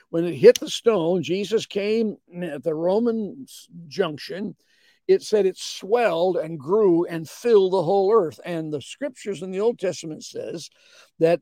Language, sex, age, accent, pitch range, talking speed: English, male, 60-79, American, 170-230 Hz, 165 wpm